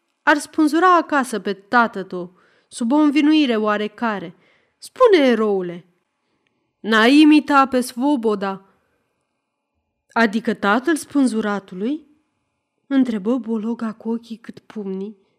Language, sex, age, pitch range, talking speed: Romanian, female, 20-39, 210-285 Hz, 95 wpm